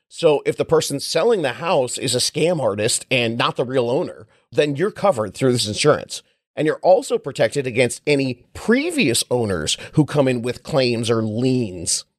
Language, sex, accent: English, male, American